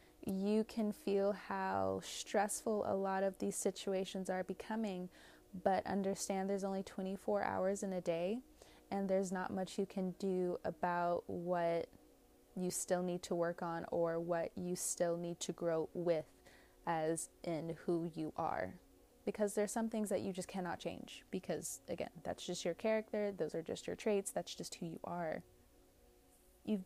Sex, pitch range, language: female, 175-205 Hz, English